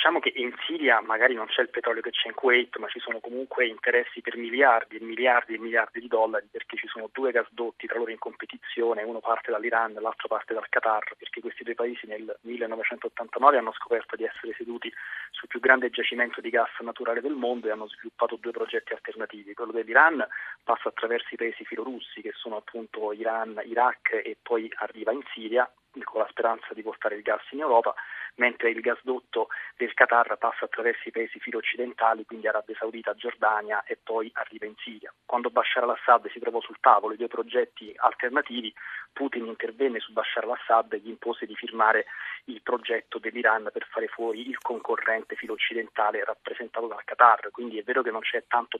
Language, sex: Italian, male